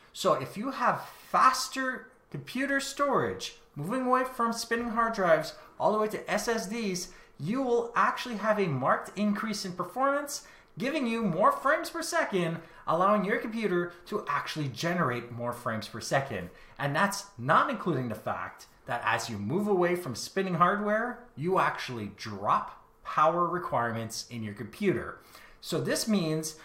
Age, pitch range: 30-49, 145-235 Hz